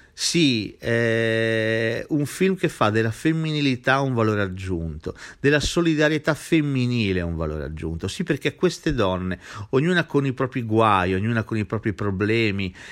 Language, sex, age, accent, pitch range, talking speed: Italian, male, 50-69, native, 100-140 Hz, 145 wpm